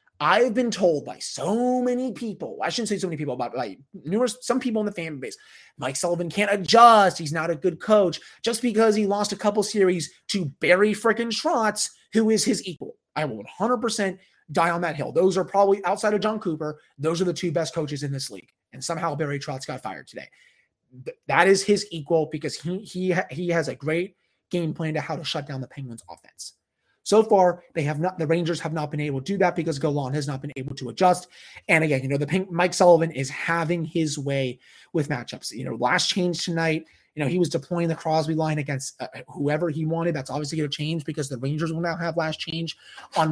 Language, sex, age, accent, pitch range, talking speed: English, male, 30-49, American, 155-205 Hz, 225 wpm